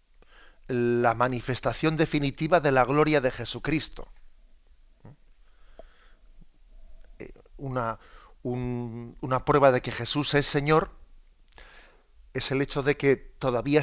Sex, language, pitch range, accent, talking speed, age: male, Spanish, 125-150 Hz, Spanish, 100 wpm, 40-59